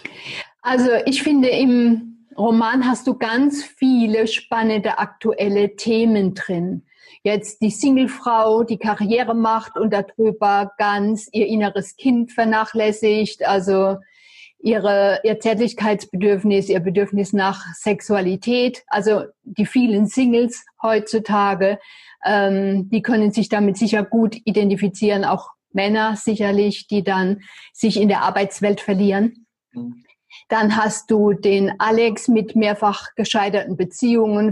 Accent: German